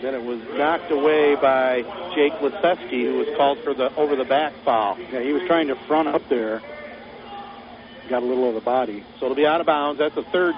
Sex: male